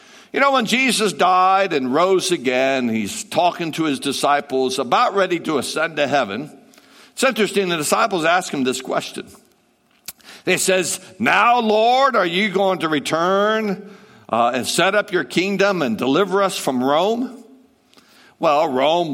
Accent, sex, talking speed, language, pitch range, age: American, male, 155 wpm, English, 160-215 Hz, 60-79